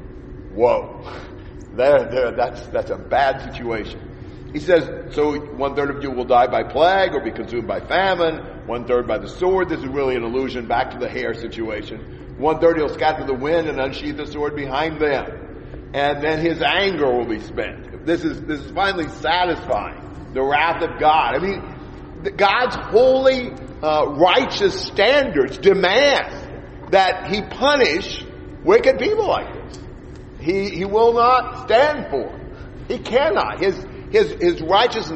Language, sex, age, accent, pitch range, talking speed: English, male, 50-69, American, 135-190 Hz, 155 wpm